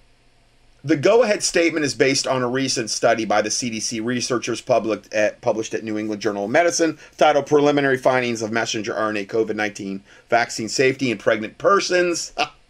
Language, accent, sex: English, American, male